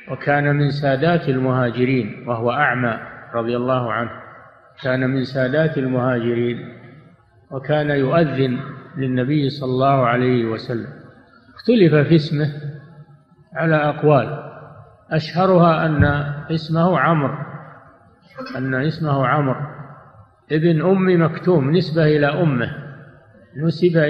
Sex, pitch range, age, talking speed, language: male, 130-160 Hz, 50-69, 95 wpm, Arabic